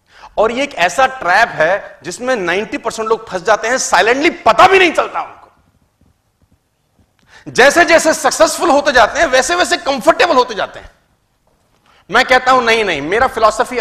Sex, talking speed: male, 165 wpm